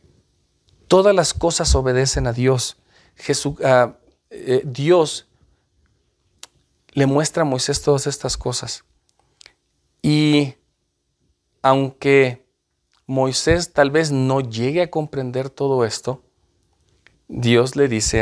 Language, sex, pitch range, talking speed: Spanish, male, 110-145 Hz, 95 wpm